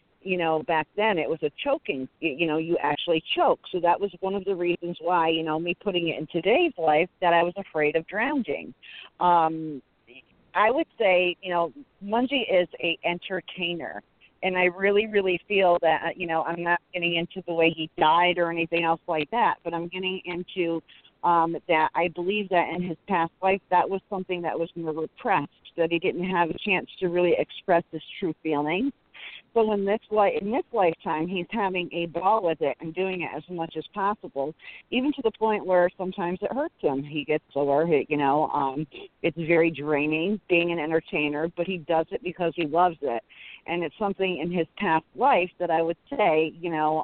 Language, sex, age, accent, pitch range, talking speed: English, female, 40-59, American, 160-185 Hz, 200 wpm